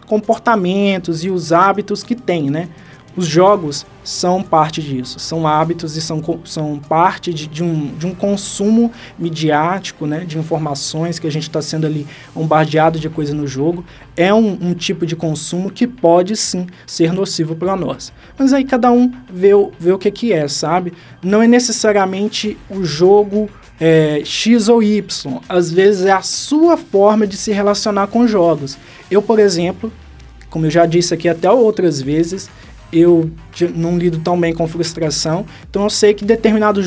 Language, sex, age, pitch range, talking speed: Portuguese, male, 20-39, 160-215 Hz, 170 wpm